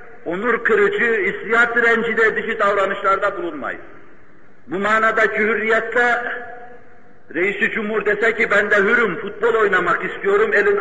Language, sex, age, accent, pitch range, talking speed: Turkish, male, 50-69, native, 165-245 Hz, 115 wpm